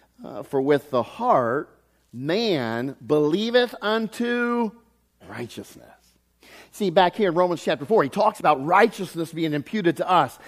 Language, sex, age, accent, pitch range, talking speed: English, male, 50-69, American, 140-200 Hz, 135 wpm